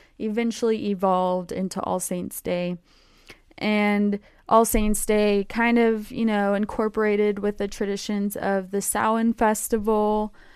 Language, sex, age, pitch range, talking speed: English, female, 20-39, 195-235 Hz, 125 wpm